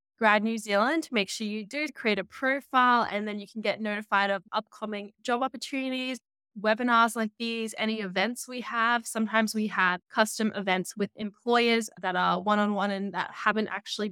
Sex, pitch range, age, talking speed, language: female, 195-235 Hz, 10-29, 175 wpm, English